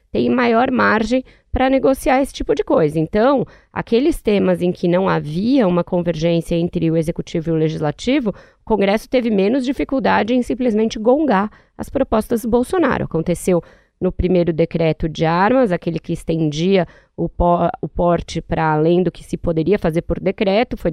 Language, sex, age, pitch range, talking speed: Portuguese, female, 20-39, 175-235 Hz, 170 wpm